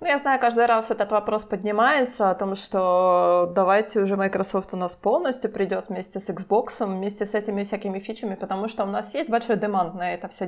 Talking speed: 205 wpm